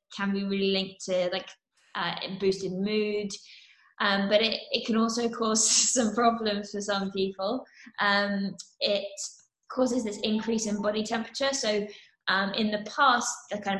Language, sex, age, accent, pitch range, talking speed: English, female, 20-39, British, 195-220 Hz, 155 wpm